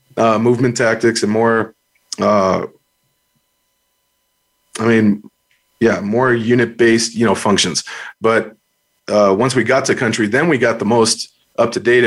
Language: English